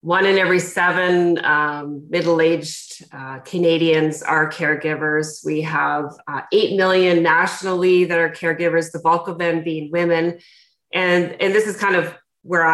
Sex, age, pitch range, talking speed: female, 30-49, 160-190 Hz, 150 wpm